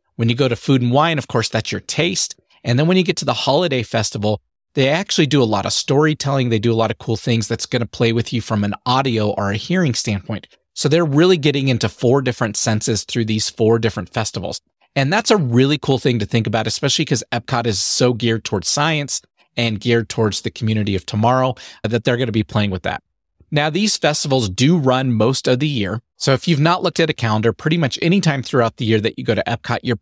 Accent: American